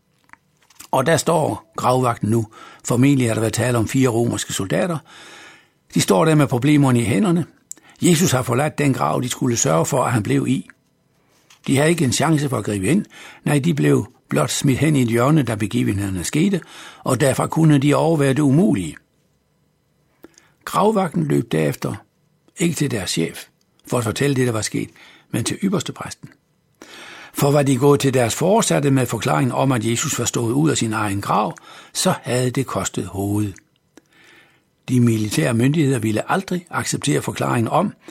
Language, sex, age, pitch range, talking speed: Danish, male, 60-79, 115-150 Hz, 175 wpm